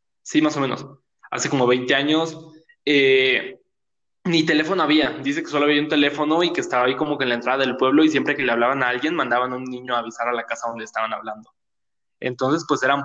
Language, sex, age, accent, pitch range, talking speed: Spanish, male, 20-39, Mexican, 120-155 Hz, 235 wpm